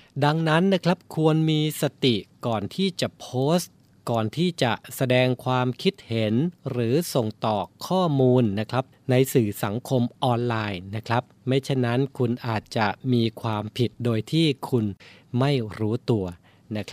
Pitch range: 115-150 Hz